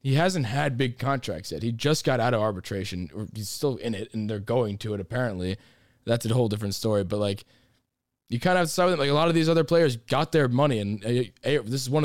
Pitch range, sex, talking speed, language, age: 105-130 Hz, male, 250 wpm, English, 20-39